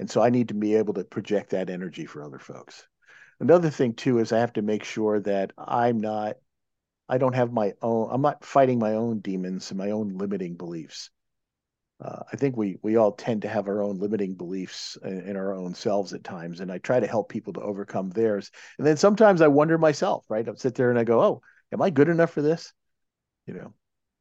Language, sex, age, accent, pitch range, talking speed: English, male, 50-69, American, 110-140 Hz, 230 wpm